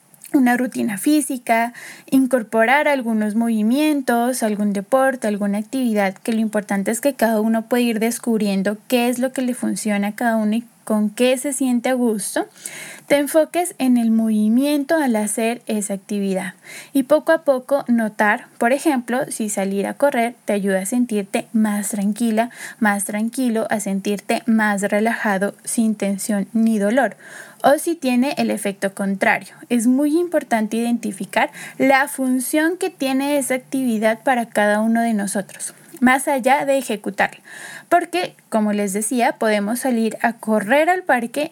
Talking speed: 155 wpm